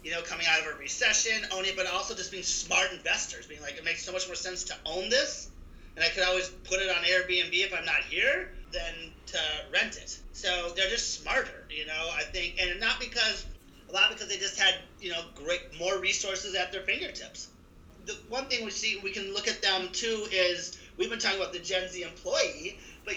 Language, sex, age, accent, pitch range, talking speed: English, male, 30-49, American, 180-220 Hz, 230 wpm